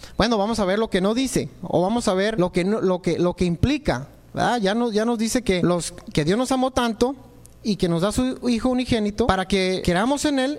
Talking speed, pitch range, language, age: 260 wpm, 180-245 Hz, Spanish, 30-49